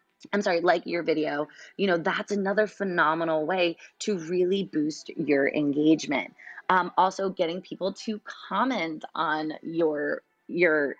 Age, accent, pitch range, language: 20-39, American, 150-205 Hz, English